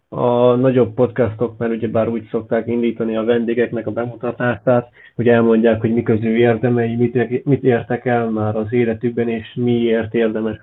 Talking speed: 150 wpm